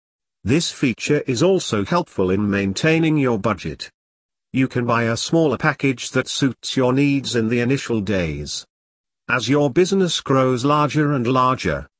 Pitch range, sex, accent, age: 105-150 Hz, male, British, 50-69